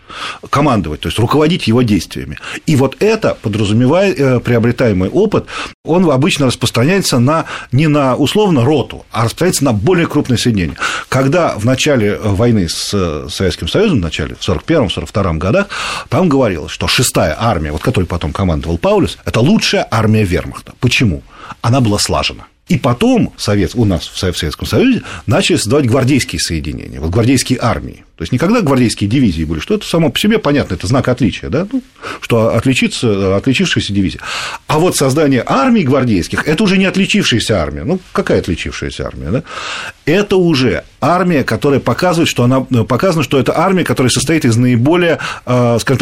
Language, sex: Russian, male